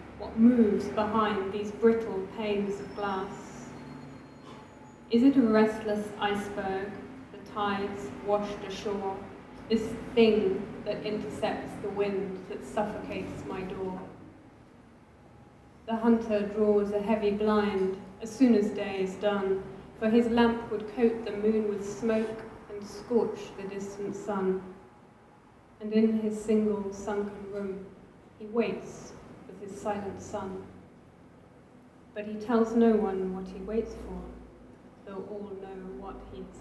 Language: English